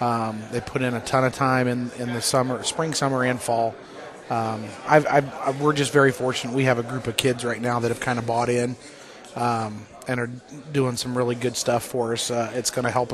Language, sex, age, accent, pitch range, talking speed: English, male, 30-49, American, 115-125 Hz, 240 wpm